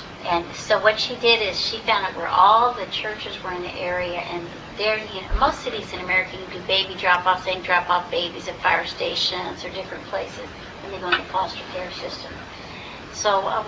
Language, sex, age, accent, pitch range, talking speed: English, female, 60-79, American, 185-215 Hz, 220 wpm